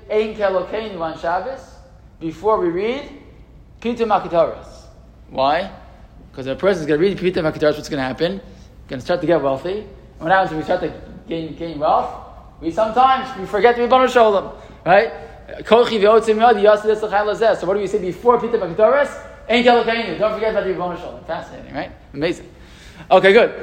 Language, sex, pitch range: English, male, 165-215 Hz